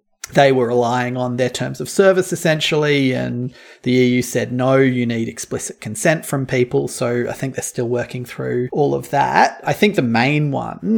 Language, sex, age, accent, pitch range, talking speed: English, male, 30-49, Australian, 125-145 Hz, 190 wpm